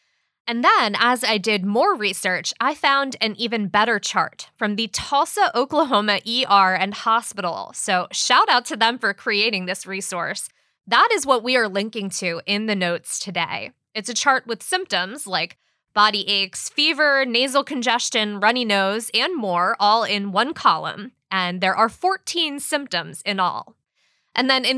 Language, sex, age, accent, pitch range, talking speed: English, female, 20-39, American, 200-285 Hz, 165 wpm